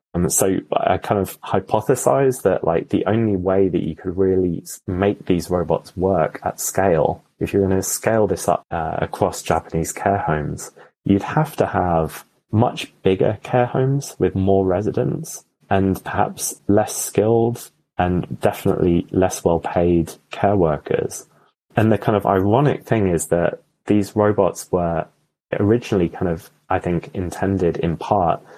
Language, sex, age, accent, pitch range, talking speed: English, male, 20-39, British, 85-100 Hz, 155 wpm